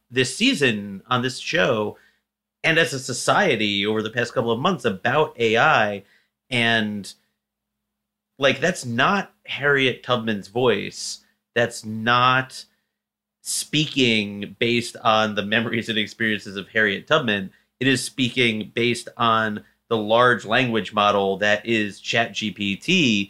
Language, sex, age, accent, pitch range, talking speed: English, male, 30-49, American, 105-125 Hz, 125 wpm